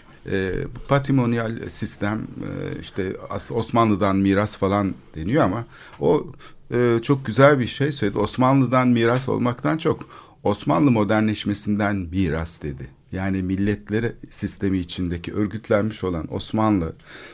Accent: native